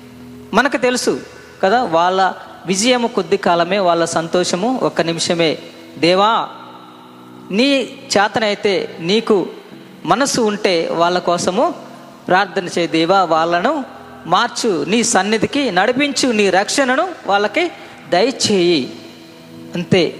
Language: Telugu